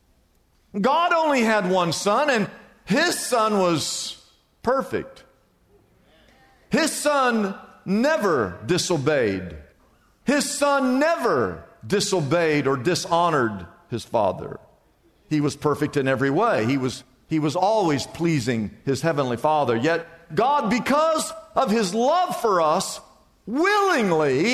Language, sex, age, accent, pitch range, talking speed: English, male, 50-69, American, 160-260 Hz, 110 wpm